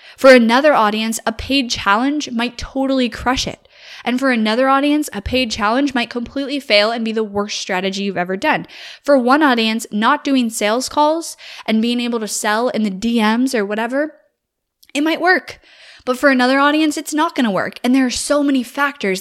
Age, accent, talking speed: 10-29, American, 195 wpm